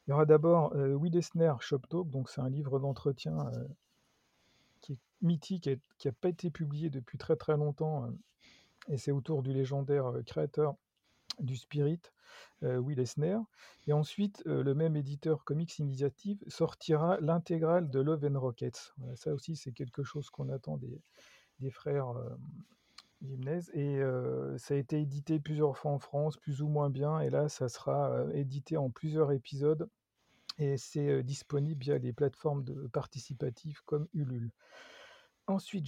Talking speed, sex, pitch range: 170 wpm, male, 140-165 Hz